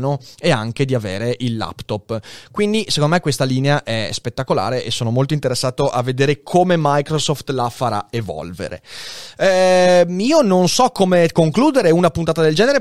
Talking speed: 160 wpm